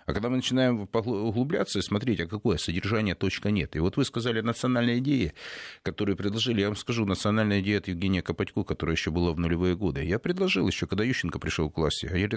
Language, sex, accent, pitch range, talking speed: Russian, male, native, 90-120 Hz, 215 wpm